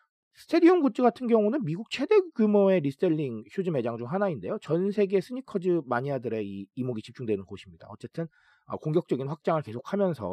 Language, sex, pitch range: Korean, male, 125-210 Hz